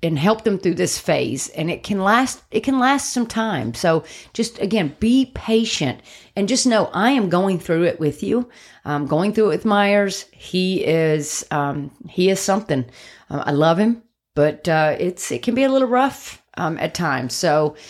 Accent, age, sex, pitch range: American, 40-59, female, 160-210 Hz